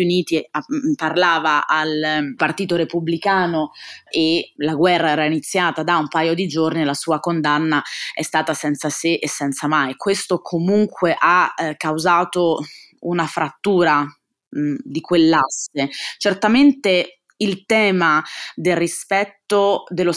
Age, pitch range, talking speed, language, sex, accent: 20-39, 160-185 Hz, 125 wpm, Italian, female, native